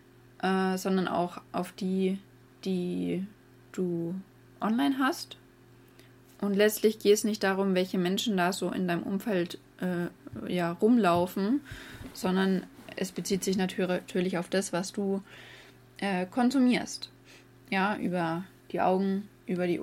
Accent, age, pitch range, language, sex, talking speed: German, 20-39, 130-195 Hz, English, female, 125 wpm